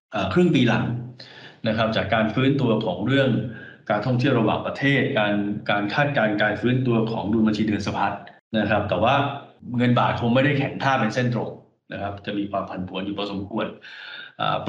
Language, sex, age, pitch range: Thai, male, 20-39, 105-130 Hz